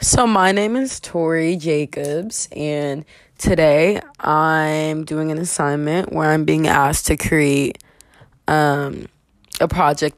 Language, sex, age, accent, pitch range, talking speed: English, female, 20-39, American, 145-185 Hz, 125 wpm